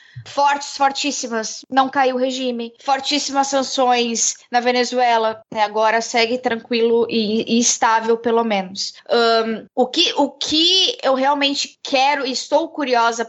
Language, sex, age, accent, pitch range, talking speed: Portuguese, female, 10-29, Brazilian, 225-270 Hz, 125 wpm